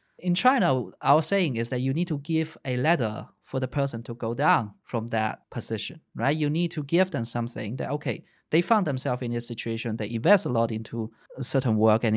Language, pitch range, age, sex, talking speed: English, 115-160 Hz, 20-39, male, 215 wpm